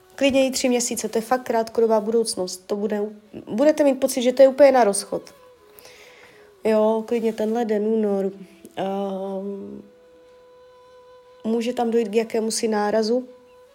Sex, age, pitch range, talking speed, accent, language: female, 20-39, 200-245 Hz, 140 wpm, native, Czech